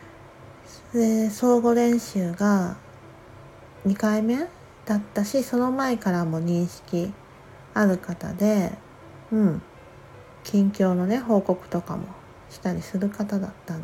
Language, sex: Japanese, female